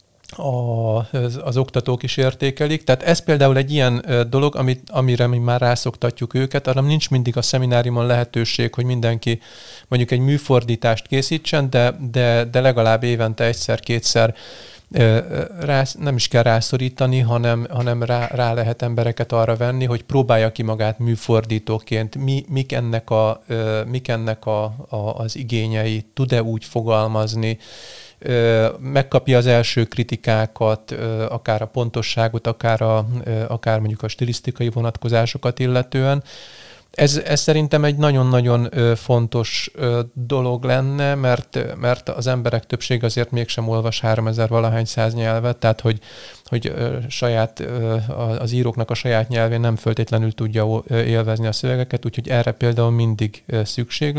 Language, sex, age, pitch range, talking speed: Hungarian, male, 40-59, 115-130 Hz, 125 wpm